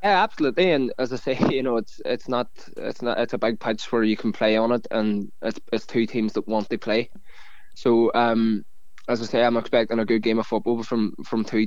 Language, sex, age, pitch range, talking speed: English, male, 20-39, 115-125 Hz, 240 wpm